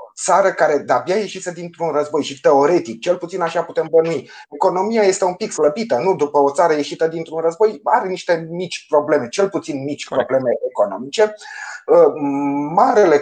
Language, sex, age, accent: Romanian, male, 30-49, native